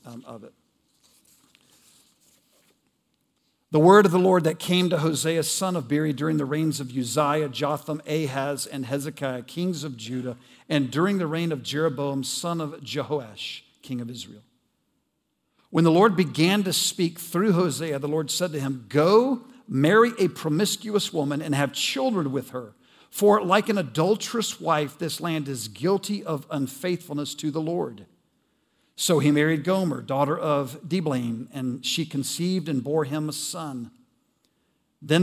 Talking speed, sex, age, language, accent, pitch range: 155 wpm, male, 50-69, English, American, 145-180 Hz